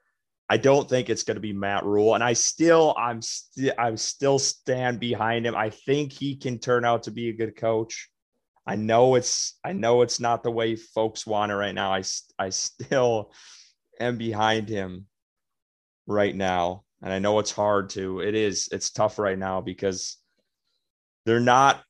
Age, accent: 30-49, American